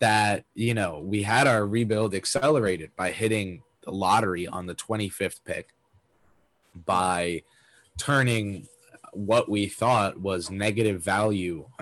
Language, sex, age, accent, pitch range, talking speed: English, male, 20-39, American, 90-105 Hz, 120 wpm